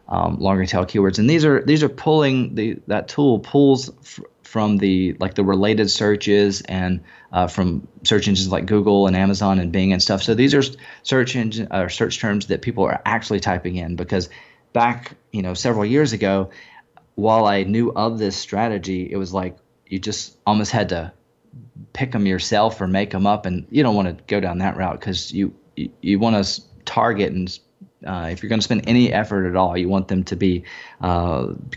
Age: 30-49